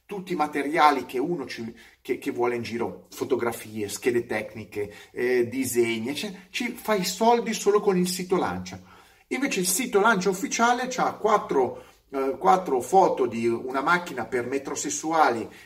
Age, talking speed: 30-49, 155 wpm